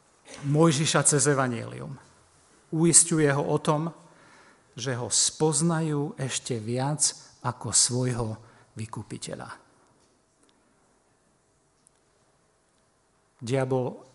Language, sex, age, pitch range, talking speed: Slovak, male, 50-69, 120-145 Hz, 70 wpm